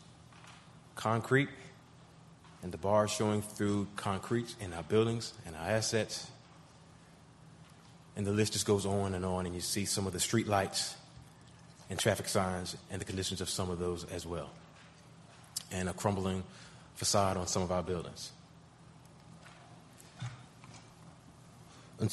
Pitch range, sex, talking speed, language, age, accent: 100-120 Hz, male, 135 wpm, English, 30-49, American